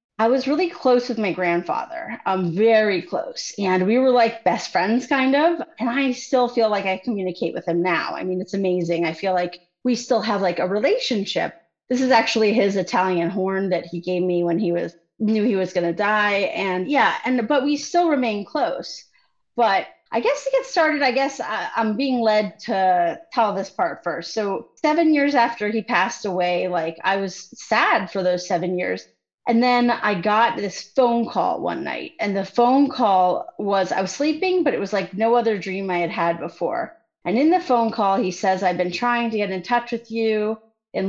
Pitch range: 185-240 Hz